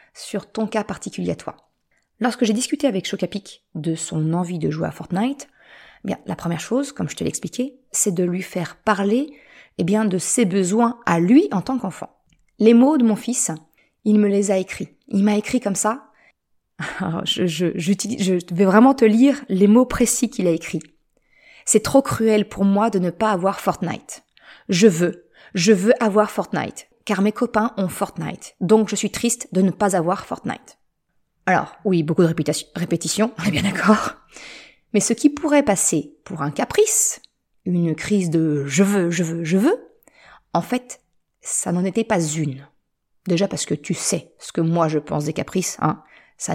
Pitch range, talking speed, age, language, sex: 175-225 Hz, 195 wpm, 20-39, French, female